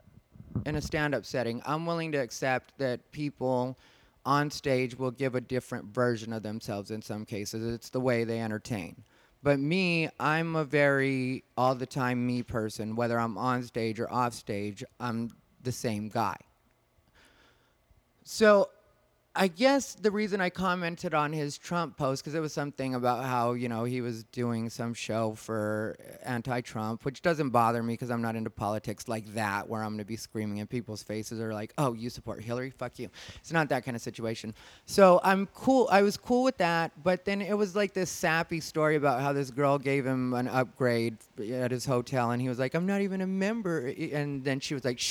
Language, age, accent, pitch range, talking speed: English, 30-49, American, 115-155 Hz, 195 wpm